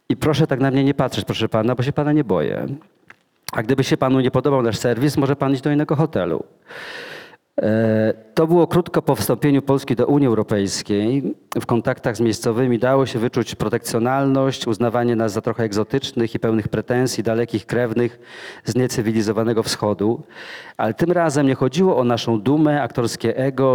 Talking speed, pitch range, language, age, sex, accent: 170 wpm, 110-135 Hz, Polish, 40-59, male, native